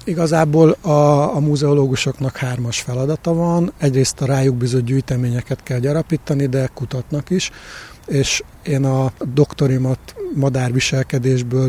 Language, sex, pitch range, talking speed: Hungarian, male, 130-150 Hz, 115 wpm